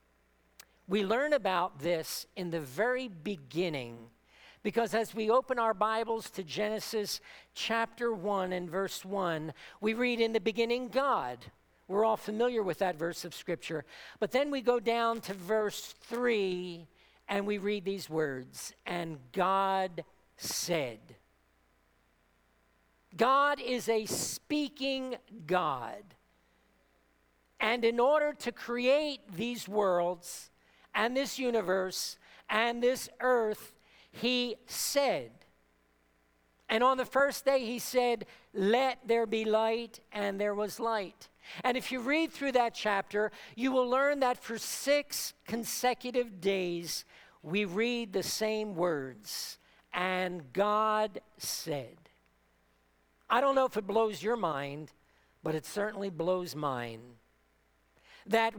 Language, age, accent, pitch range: English, 50-69, American, 165-235 Hz